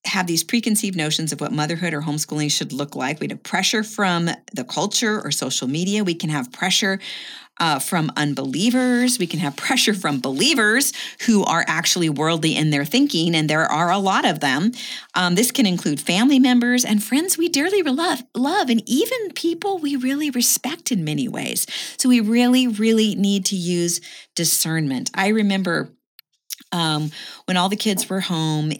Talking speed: 180 wpm